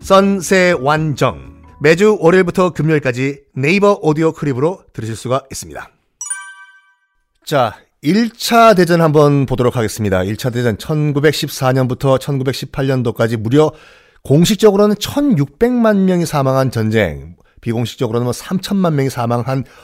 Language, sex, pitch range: Korean, male, 130-195 Hz